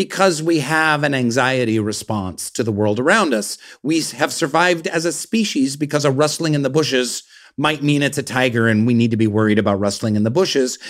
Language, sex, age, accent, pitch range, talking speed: English, male, 40-59, American, 125-170 Hz, 215 wpm